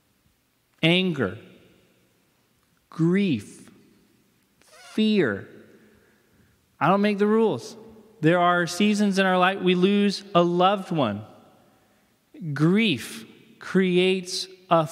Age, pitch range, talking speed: 30-49, 165-200 Hz, 90 wpm